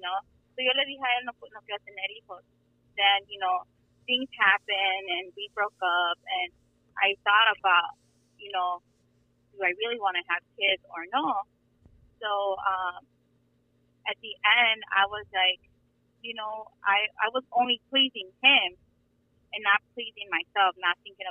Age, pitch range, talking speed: 20-39, 180-215 Hz, 135 wpm